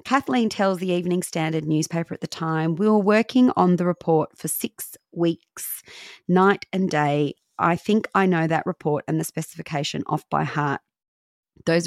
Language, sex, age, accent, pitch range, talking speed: English, female, 30-49, Australian, 150-185 Hz, 170 wpm